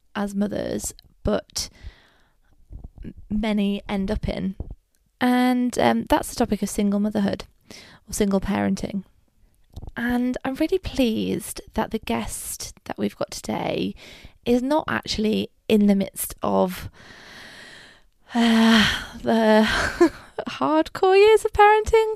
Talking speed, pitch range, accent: 115 wpm, 195-240 Hz, British